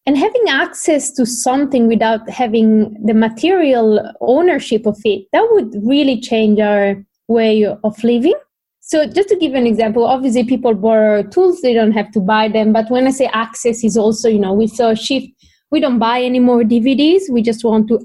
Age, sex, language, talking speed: 20-39, female, English, 195 wpm